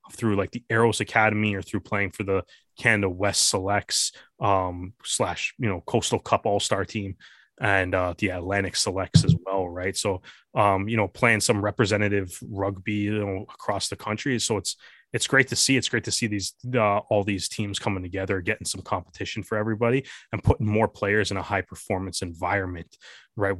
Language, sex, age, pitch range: English, male, 20-39, 95-110 Hz